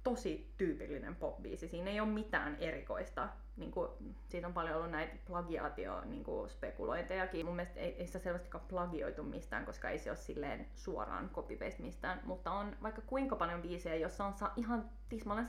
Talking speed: 165 wpm